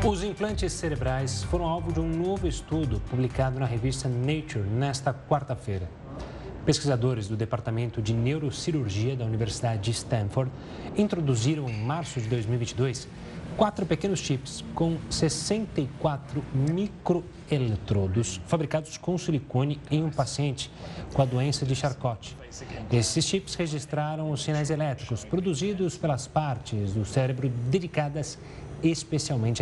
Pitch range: 120-155 Hz